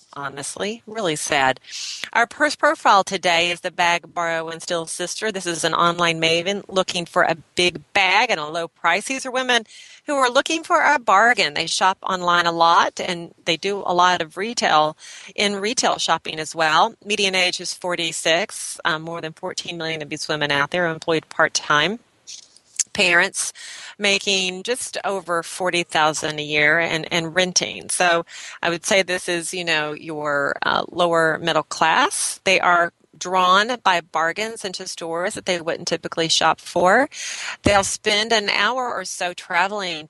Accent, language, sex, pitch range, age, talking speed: American, English, female, 160-195 Hz, 40-59, 170 wpm